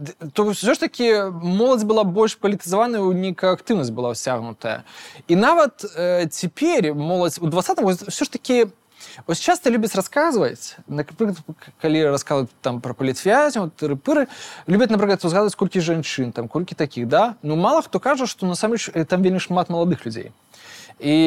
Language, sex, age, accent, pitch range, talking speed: Russian, male, 20-39, native, 145-200 Hz, 155 wpm